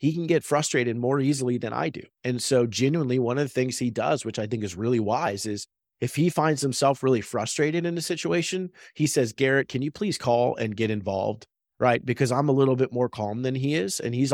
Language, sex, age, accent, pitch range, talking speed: English, male, 30-49, American, 115-145 Hz, 240 wpm